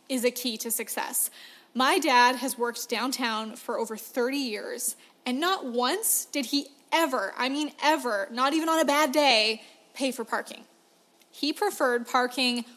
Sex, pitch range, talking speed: female, 240-290 Hz, 165 wpm